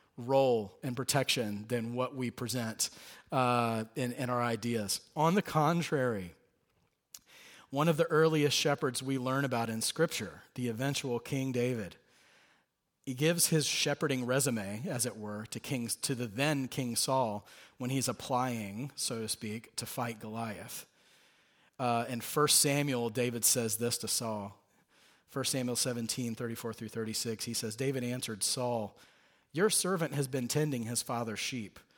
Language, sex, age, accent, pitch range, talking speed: English, male, 40-59, American, 115-150 Hz, 150 wpm